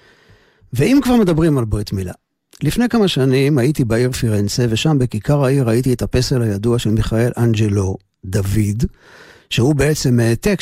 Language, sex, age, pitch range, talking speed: Hebrew, male, 50-69, 110-150 Hz, 145 wpm